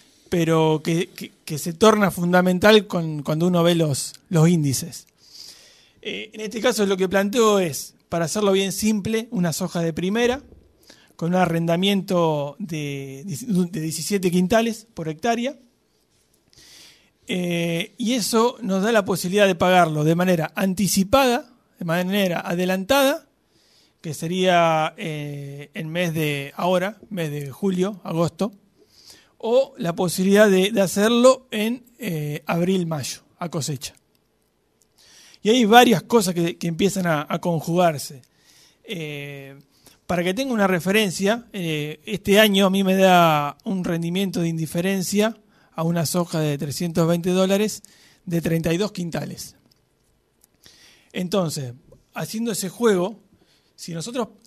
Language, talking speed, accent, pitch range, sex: Spanish, 130 wpm, Argentinian, 165-210 Hz, male